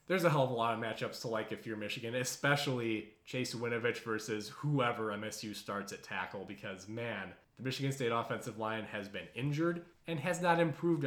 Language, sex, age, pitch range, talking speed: English, male, 20-39, 115-150 Hz, 195 wpm